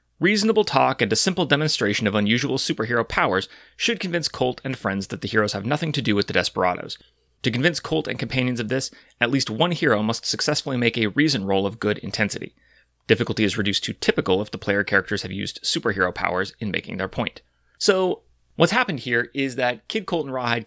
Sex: male